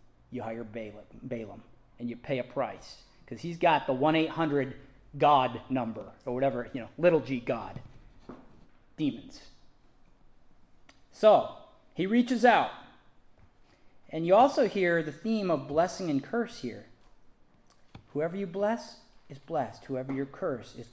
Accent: American